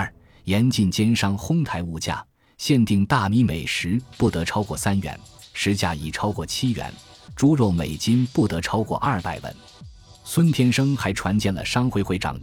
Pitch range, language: 85-110 Hz, Chinese